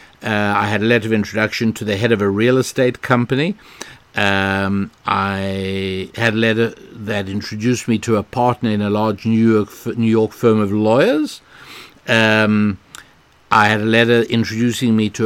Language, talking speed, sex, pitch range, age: English, 175 wpm, male, 110-135 Hz, 60-79